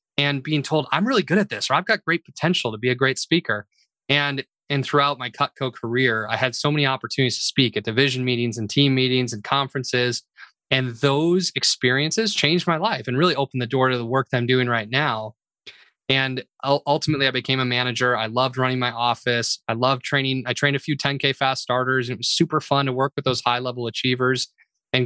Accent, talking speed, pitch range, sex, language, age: American, 220 wpm, 120-145 Hz, male, English, 20-39